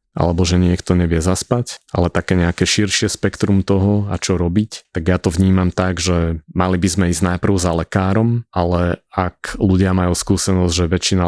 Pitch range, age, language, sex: 85-95 Hz, 30-49, Slovak, male